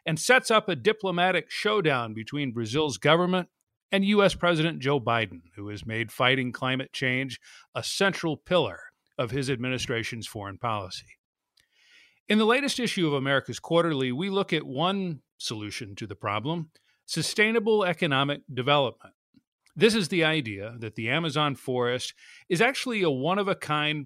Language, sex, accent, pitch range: English, male, American, 120-170 Hz